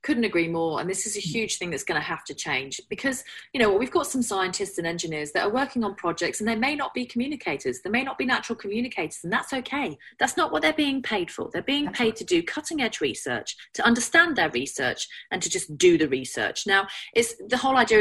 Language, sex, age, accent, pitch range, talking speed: English, female, 30-49, British, 165-265 Hz, 245 wpm